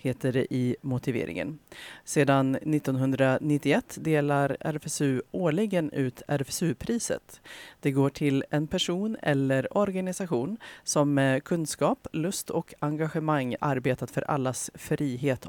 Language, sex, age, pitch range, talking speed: Swedish, female, 30-49, 130-155 Hz, 110 wpm